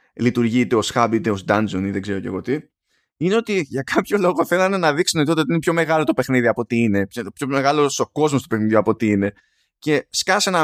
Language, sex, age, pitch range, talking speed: Greek, male, 20-39, 110-180 Hz, 235 wpm